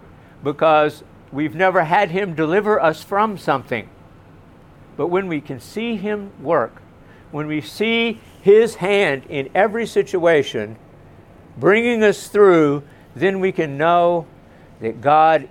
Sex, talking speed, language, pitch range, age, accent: male, 130 wpm, English, 145-190 Hz, 60-79, American